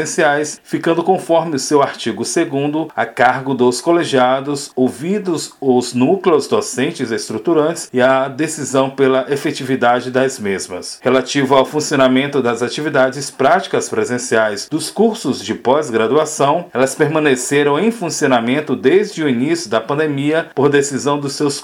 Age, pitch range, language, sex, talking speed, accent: 40-59, 125-150 Hz, Portuguese, male, 130 wpm, Brazilian